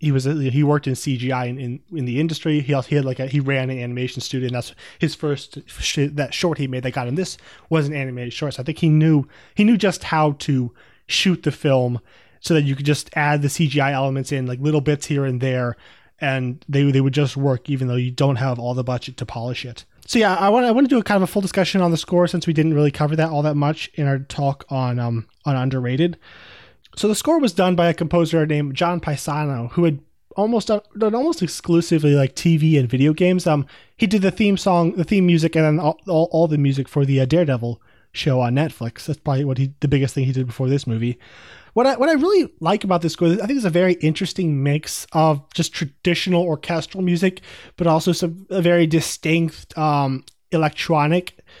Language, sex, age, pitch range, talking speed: English, male, 20-39, 135-170 Hz, 240 wpm